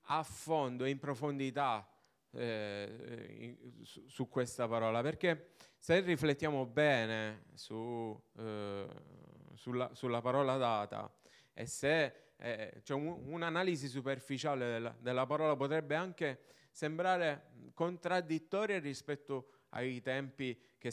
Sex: male